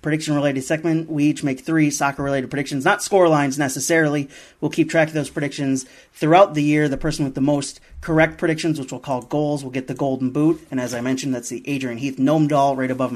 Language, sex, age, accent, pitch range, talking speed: English, male, 30-49, American, 135-165 Hz, 225 wpm